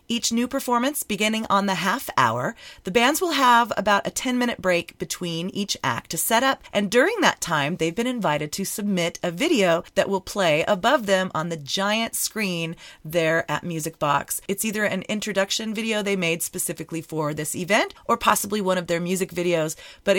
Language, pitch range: English, 175-225 Hz